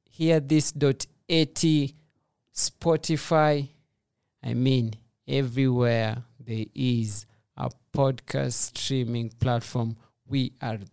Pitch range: 125-145 Hz